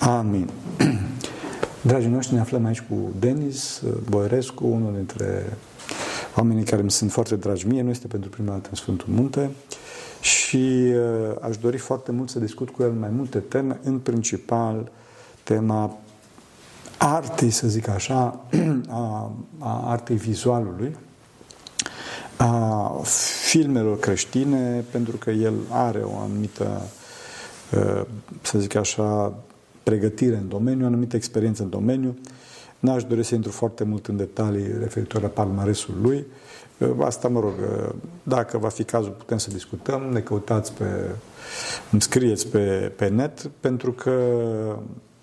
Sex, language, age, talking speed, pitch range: male, Romanian, 50-69, 130 wpm, 110-125 Hz